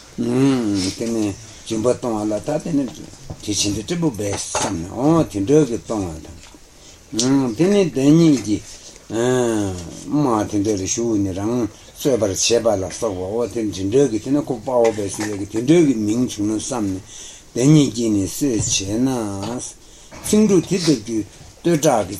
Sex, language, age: male, Italian, 60-79